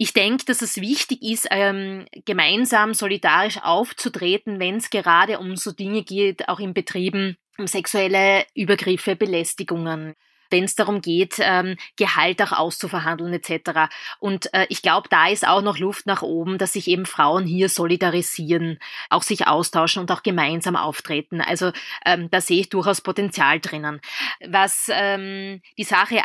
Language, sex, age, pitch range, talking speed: German, female, 20-39, 180-210 Hz, 145 wpm